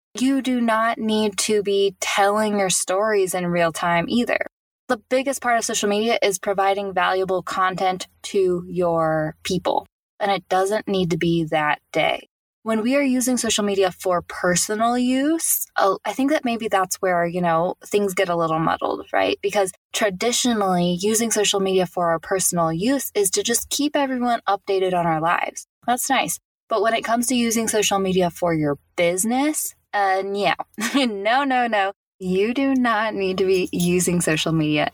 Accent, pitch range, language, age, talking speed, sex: American, 175-225 Hz, English, 10-29, 175 wpm, female